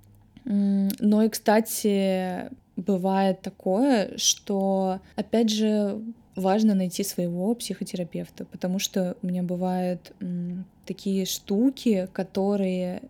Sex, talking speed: female, 95 wpm